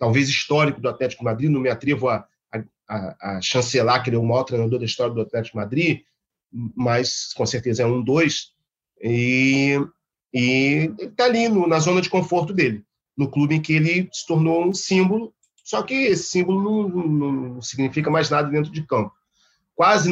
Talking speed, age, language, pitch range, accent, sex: 190 wpm, 40-59, Portuguese, 125-170 Hz, Brazilian, male